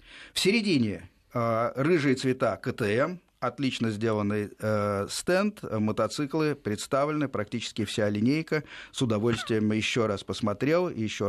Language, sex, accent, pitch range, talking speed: Russian, male, native, 105-140 Hz, 110 wpm